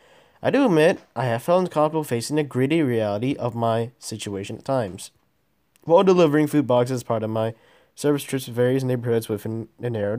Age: 20-39